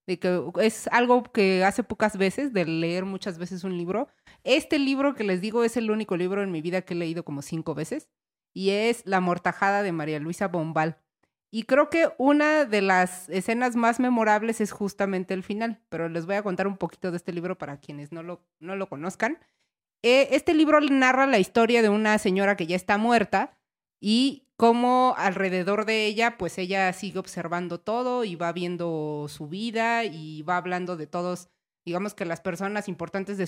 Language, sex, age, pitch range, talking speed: Spanish, female, 30-49, 170-220 Hz, 195 wpm